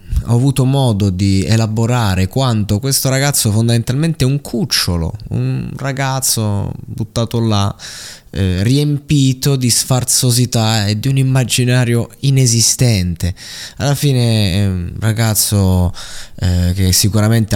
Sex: male